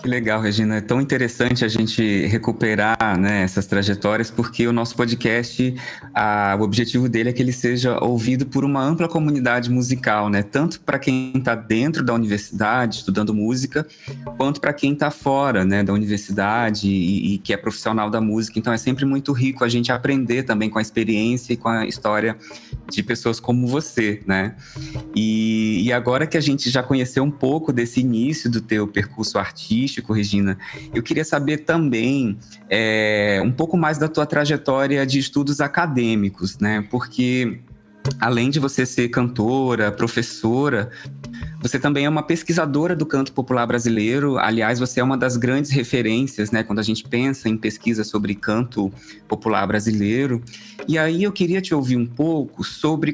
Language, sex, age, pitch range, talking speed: Portuguese, male, 20-39, 110-145 Hz, 170 wpm